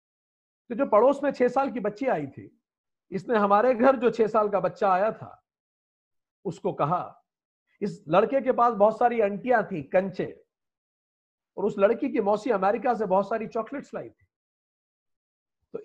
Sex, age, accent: male, 50-69, native